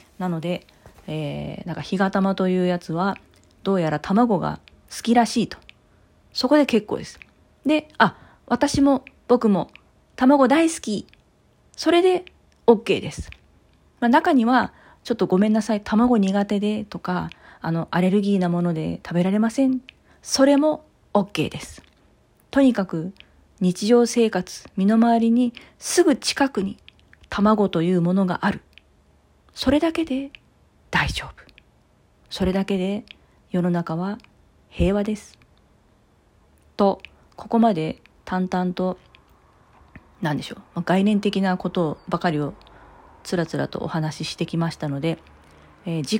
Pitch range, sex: 155-220 Hz, female